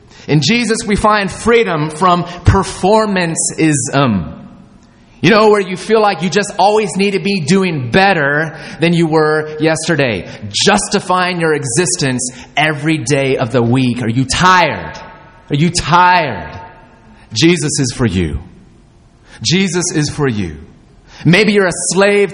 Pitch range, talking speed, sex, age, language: 145-200 Hz, 135 wpm, male, 30-49, English